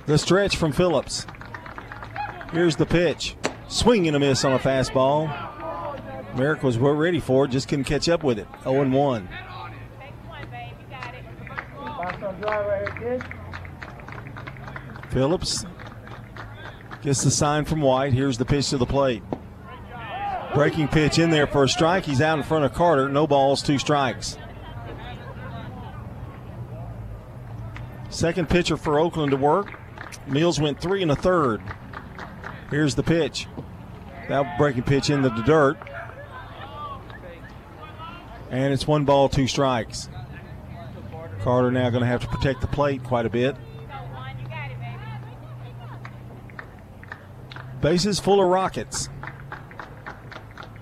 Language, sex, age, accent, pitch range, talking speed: English, male, 40-59, American, 120-150 Hz, 120 wpm